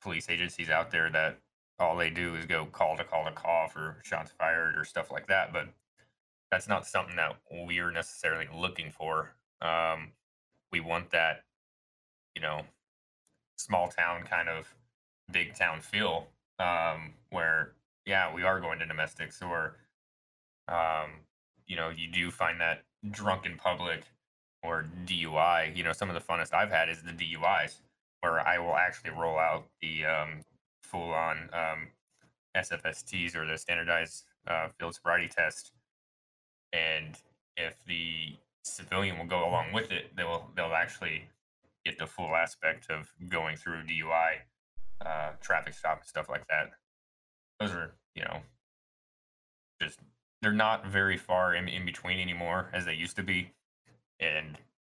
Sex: male